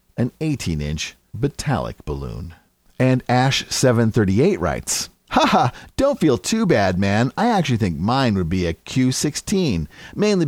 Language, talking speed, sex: English, 125 wpm, male